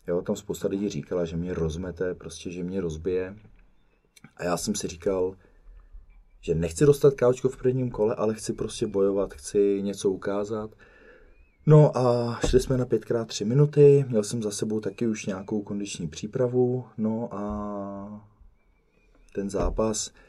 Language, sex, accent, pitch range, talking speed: Czech, male, native, 90-115 Hz, 155 wpm